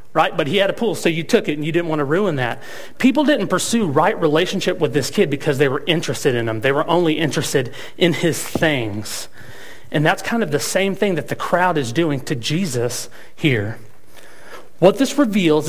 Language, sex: English, male